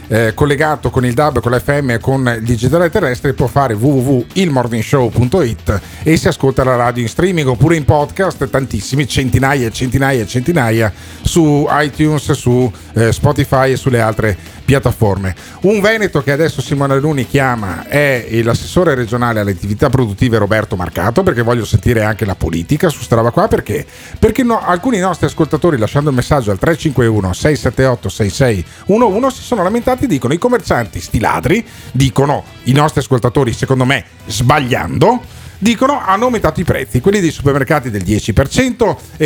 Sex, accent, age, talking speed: male, native, 50-69, 155 wpm